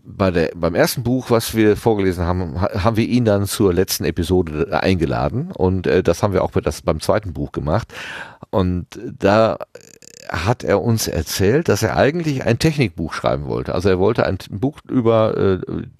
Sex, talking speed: male, 180 wpm